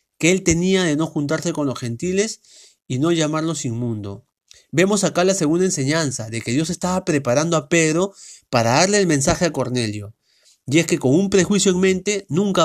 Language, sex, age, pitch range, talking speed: Spanish, male, 40-59, 130-180 Hz, 190 wpm